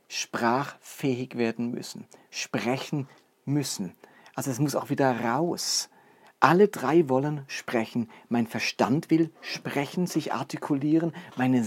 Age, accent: 50-69, German